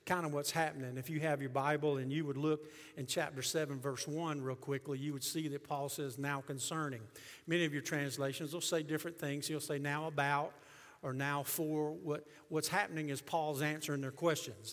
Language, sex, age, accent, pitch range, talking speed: English, male, 50-69, American, 140-165 Hz, 210 wpm